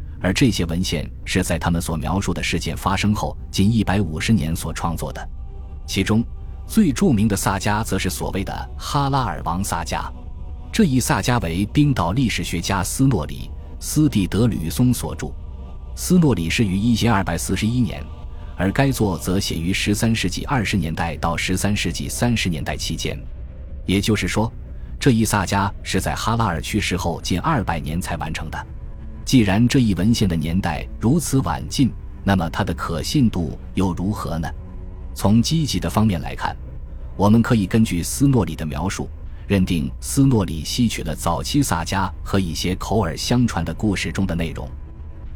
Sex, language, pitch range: male, Chinese, 80-105 Hz